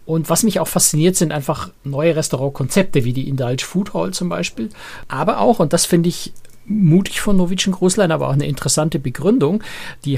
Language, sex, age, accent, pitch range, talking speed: German, male, 60-79, German, 135-175 Hz, 190 wpm